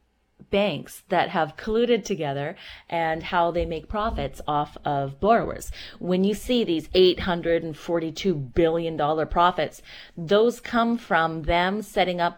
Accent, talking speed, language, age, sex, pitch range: American, 130 wpm, English, 30-49, female, 155-190 Hz